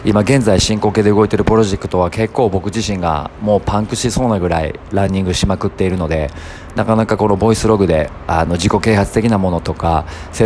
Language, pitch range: Japanese, 85-105 Hz